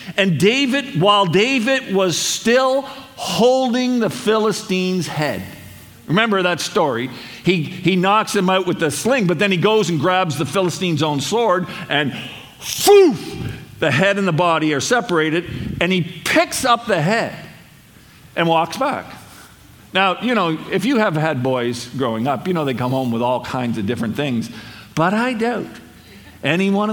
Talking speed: 165 wpm